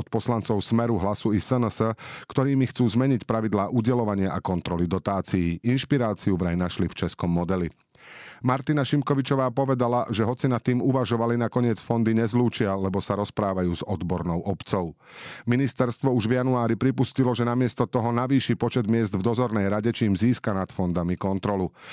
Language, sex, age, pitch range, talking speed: Slovak, male, 40-59, 100-125 Hz, 155 wpm